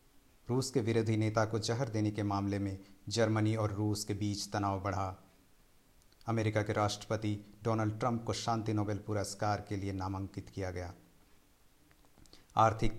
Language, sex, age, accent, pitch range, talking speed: Hindi, male, 50-69, native, 100-110 Hz, 150 wpm